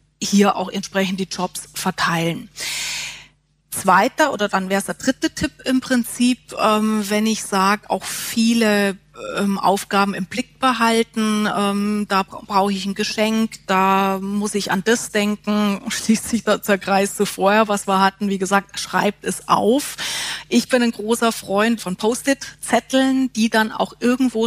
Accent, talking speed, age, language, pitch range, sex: German, 145 wpm, 30-49, German, 195-235 Hz, female